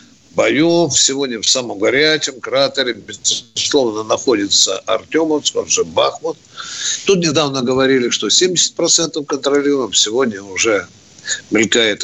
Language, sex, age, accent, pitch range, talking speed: Russian, male, 60-79, native, 120-150 Hz, 110 wpm